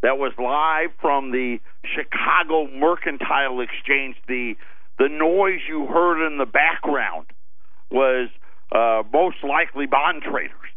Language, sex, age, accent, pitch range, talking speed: English, male, 50-69, American, 130-205 Hz, 125 wpm